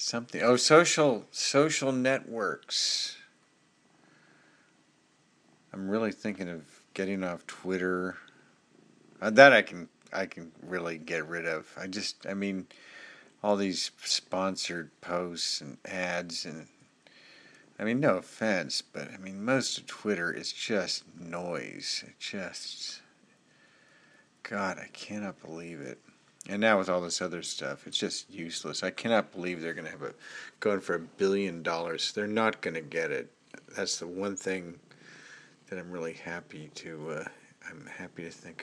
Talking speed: 145 wpm